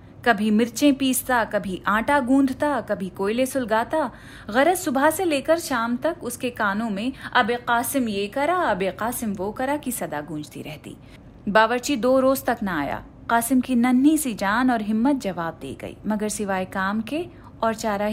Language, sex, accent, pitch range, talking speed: Hindi, female, native, 205-280 Hz, 170 wpm